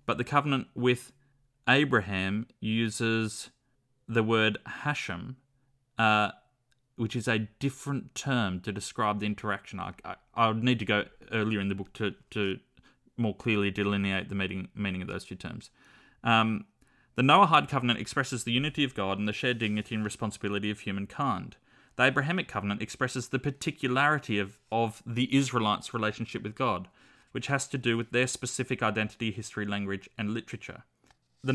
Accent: Australian